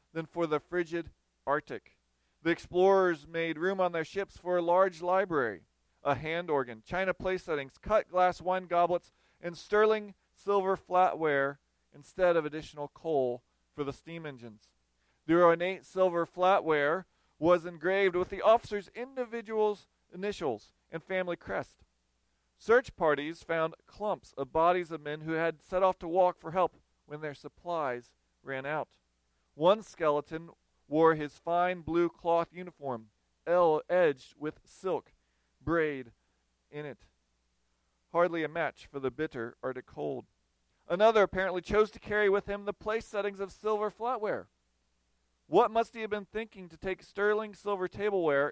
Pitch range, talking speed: 140-185 Hz, 145 wpm